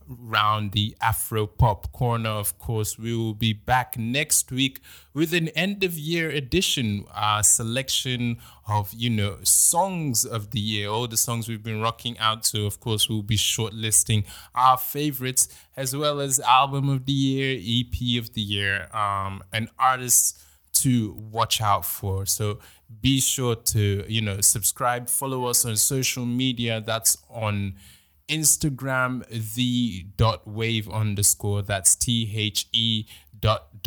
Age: 20-39